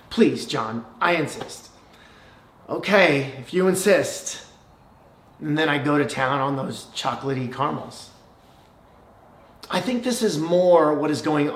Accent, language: American, English